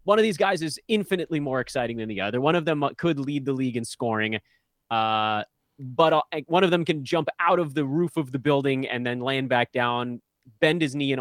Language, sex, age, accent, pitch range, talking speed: English, male, 30-49, American, 110-155 Hz, 235 wpm